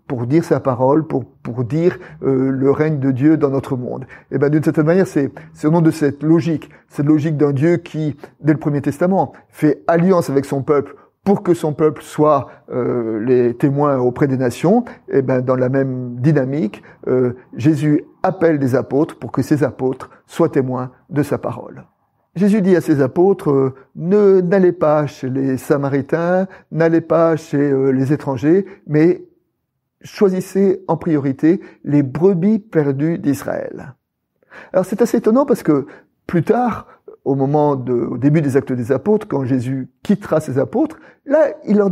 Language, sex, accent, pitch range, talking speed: French, male, French, 135-170 Hz, 175 wpm